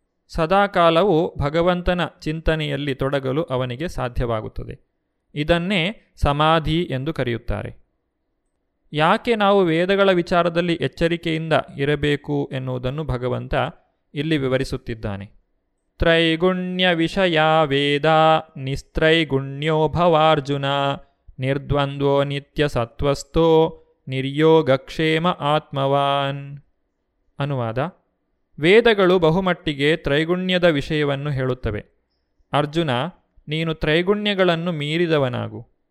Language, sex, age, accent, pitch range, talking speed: Kannada, male, 30-49, native, 135-175 Hz, 65 wpm